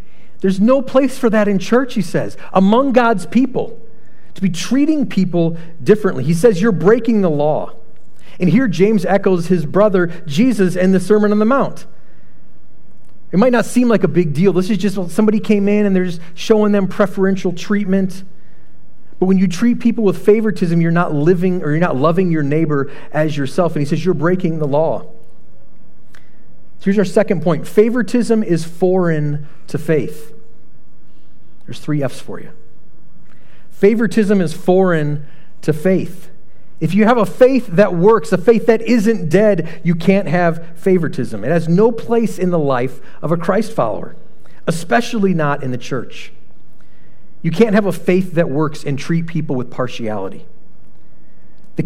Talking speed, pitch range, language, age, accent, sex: 170 wpm, 155-210 Hz, English, 40-59, American, male